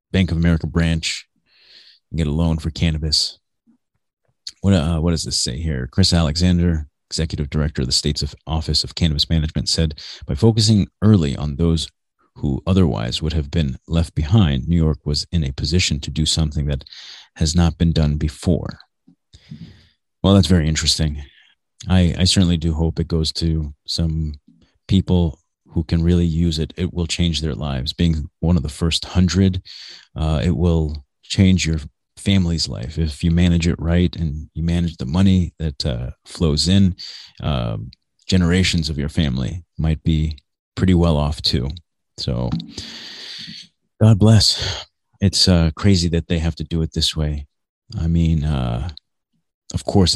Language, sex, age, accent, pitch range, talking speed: English, male, 30-49, American, 75-90 Hz, 165 wpm